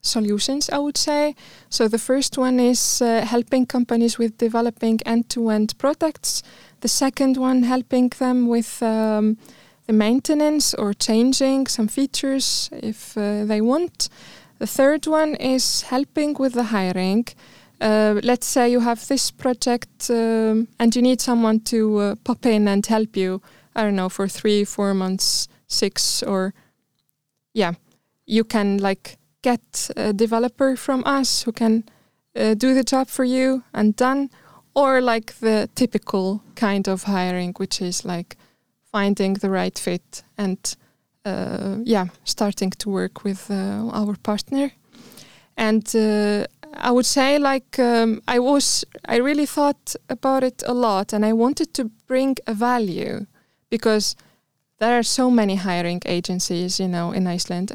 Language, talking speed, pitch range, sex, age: English, 150 wpm, 205-255 Hz, female, 20-39